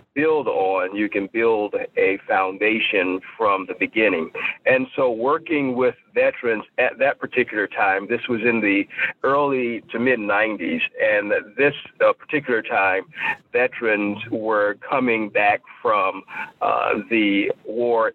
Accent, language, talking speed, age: American, English, 125 wpm, 50-69